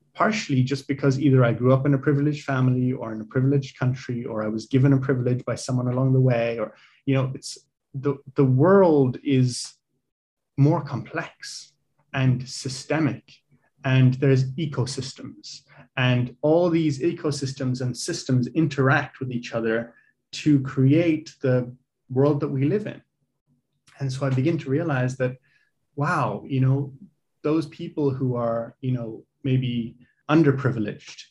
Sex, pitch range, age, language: male, 125-145 Hz, 30-49, English